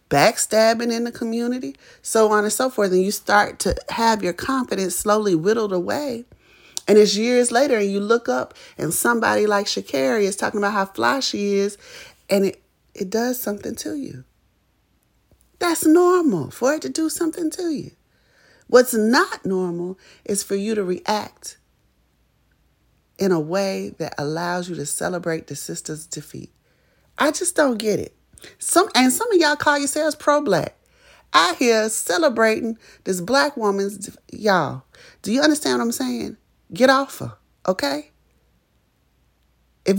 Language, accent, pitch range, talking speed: English, American, 190-270 Hz, 160 wpm